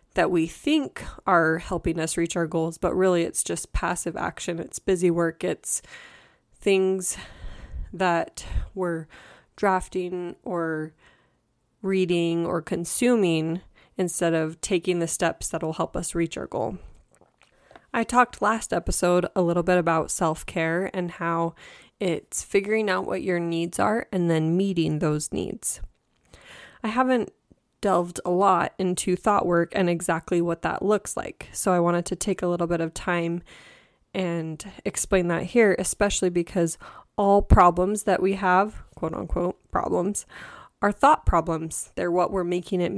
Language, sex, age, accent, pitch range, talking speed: English, female, 20-39, American, 170-195 Hz, 150 wpm